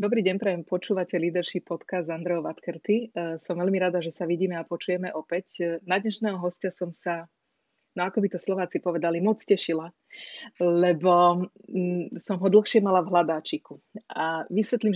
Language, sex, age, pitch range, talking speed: Slovak, female, 30-49, 170-185 Hz, 155 wpm